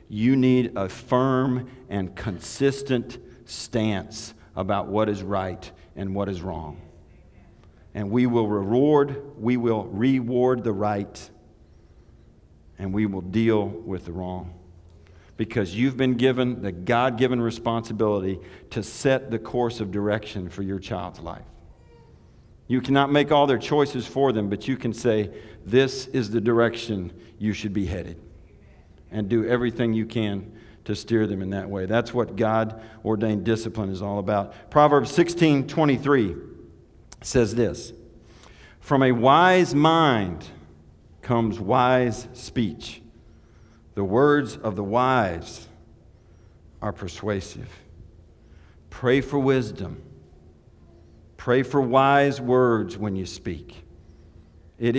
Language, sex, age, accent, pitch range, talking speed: English, male, 50-69, American, 95-125 Hz, 125 wpm